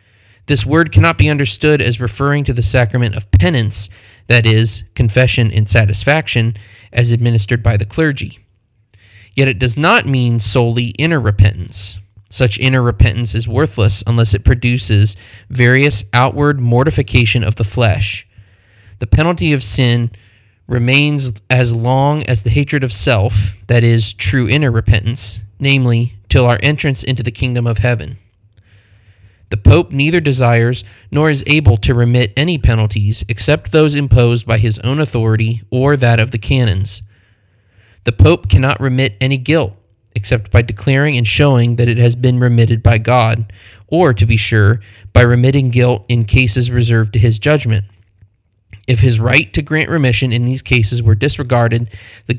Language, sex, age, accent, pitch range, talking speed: English, male, 20-39, American, 105-130 Hz, 155 wpm